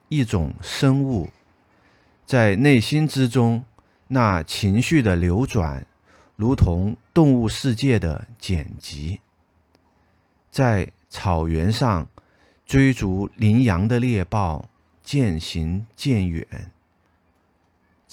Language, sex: Chinese, male